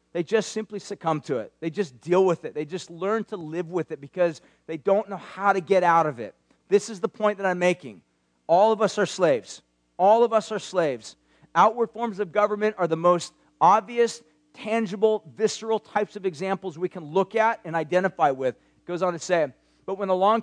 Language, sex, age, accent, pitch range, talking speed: English, male, 40-59, American, 170-215 Hz, 215 wpm